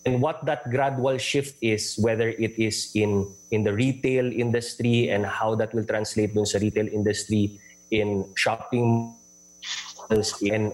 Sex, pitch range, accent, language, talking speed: male, 105-130 Hz, Filipino, English, 145 wpm